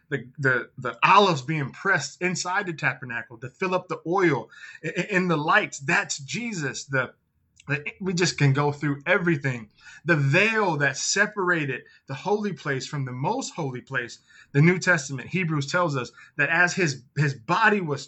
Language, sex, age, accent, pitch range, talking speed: English, male, 20-39, American, 145-200 Hz, 165 wpm